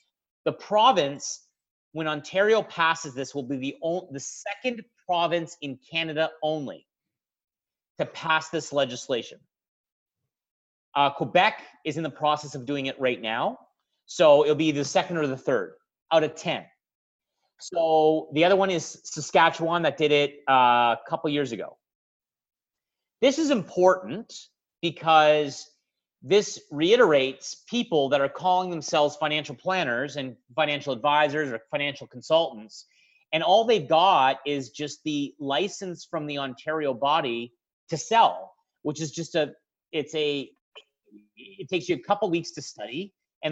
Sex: male